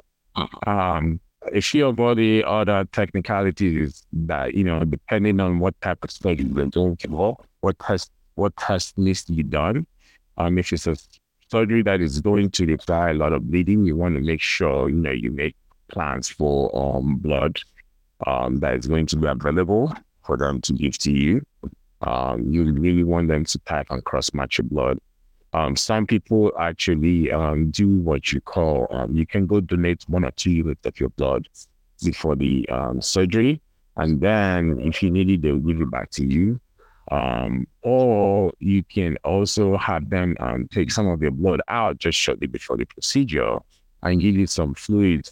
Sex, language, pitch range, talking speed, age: male, English, 75-100 Hz, 185 wpm, 50-69